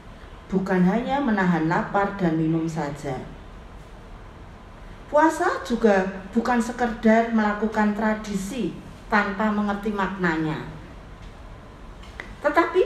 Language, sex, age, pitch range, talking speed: Indonesian, female, 40-59, 175-235 Hz, 80 wpm